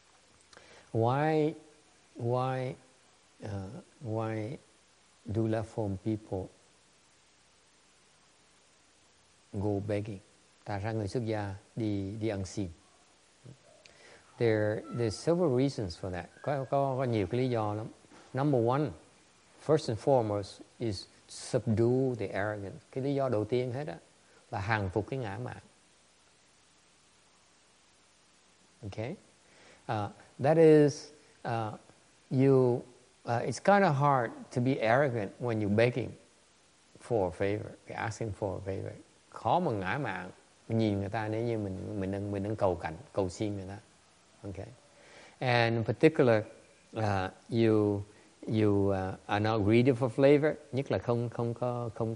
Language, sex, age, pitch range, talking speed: English, male, 60-79, 100-125 Hz, 130 wpm